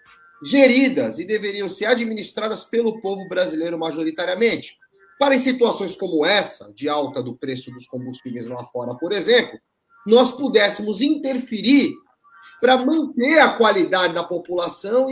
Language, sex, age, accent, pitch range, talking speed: Portuguese, male, 30-49, Brazilian, 190-270 Hz, 130 wpm